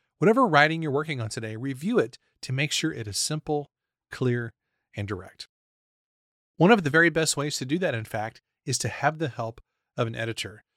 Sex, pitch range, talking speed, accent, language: male, 120-160 Hz, 200 wpm, American, English